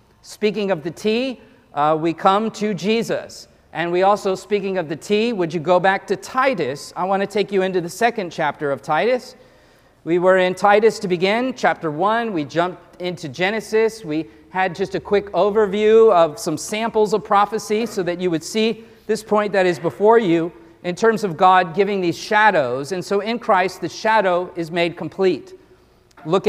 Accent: American